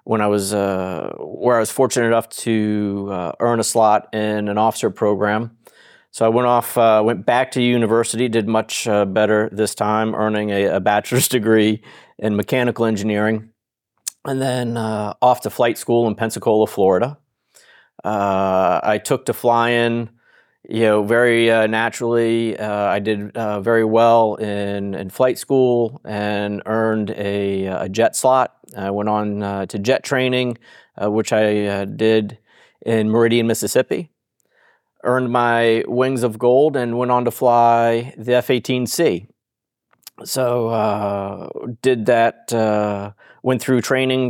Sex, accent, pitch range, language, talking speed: male, American, 105-120 Hz, English, 150 wpm